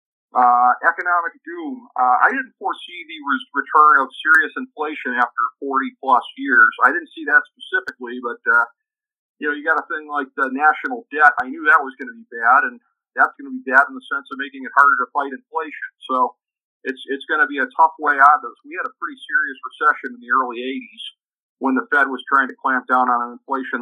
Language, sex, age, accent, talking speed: English, male, 50-69, American, 225 wpm